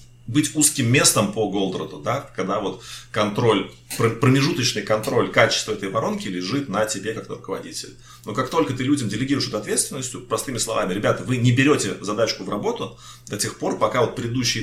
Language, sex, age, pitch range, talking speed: Russian, male, 30-49, 110-140 Hz, 170 wpm